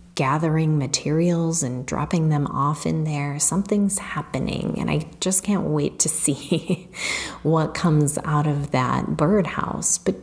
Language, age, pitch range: English, 30-49, 135-170 Hz